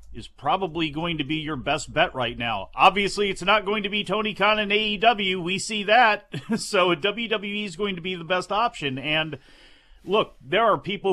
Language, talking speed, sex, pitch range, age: English, 200 wpm, male, 145-175 Hz, 40-59